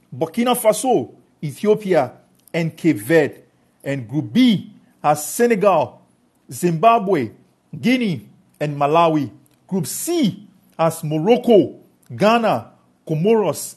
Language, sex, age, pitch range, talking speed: English, male, 50-69, 145-205 Hz, 90 wpm